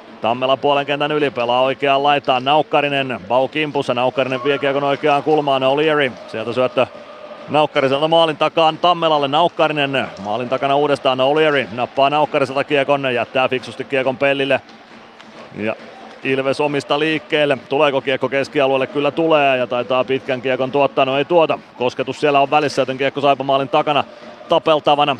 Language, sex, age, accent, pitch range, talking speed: Finnish, male, 30-49, native, 135-155 Hz, 145 wpm